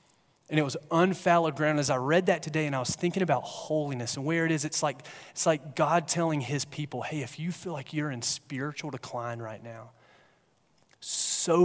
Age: 30-49